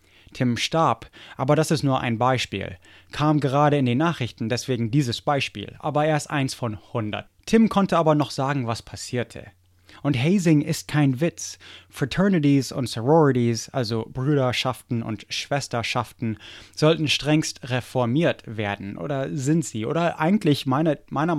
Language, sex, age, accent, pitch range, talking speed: English, male, 20-39, German, 110-145 Hz, 145 wpm